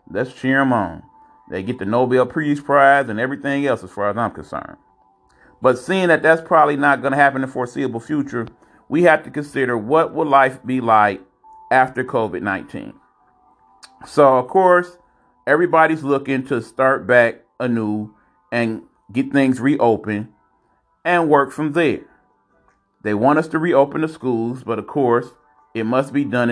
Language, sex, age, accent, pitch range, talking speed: English, male, 30-49, American, 120-150 Hz, 165 wpm